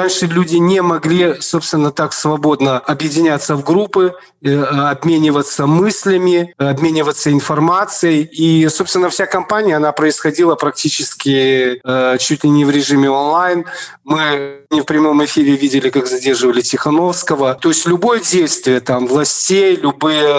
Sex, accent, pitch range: male, native, 145-180 Hz